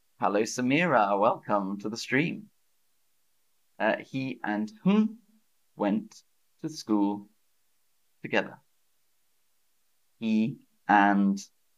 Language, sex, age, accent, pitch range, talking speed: English, male, 30-49, British, 110-155 Hz, 80 wpm